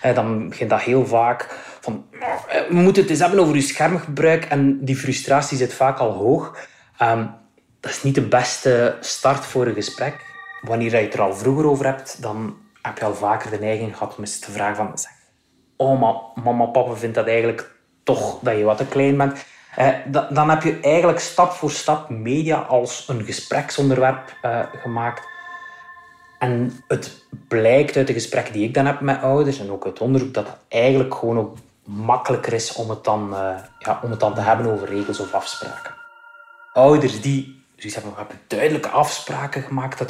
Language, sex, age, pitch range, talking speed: Dutch, male, 20-39, 115-145 Hz, 190 wpm